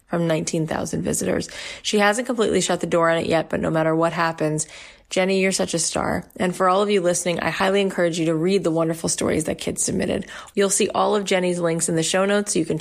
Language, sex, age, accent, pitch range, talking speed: English, female, 30-49, American, 165-205 Hz, 250 wpm